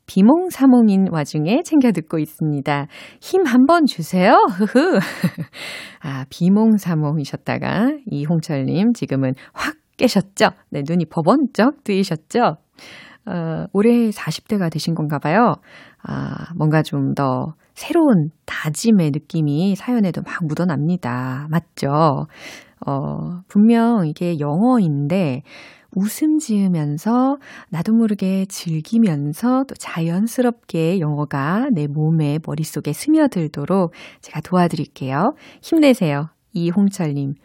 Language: Korean